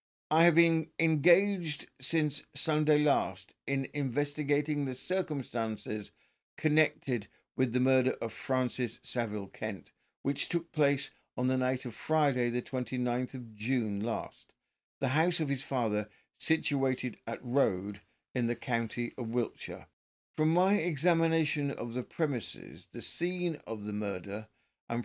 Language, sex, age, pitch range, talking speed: English, male, 50-69, 120-155 Hz, 135 wpm